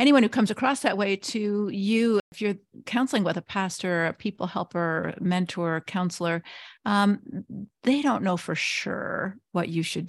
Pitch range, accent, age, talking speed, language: 175-220 Hz, American, 50-69, 165 wpm, English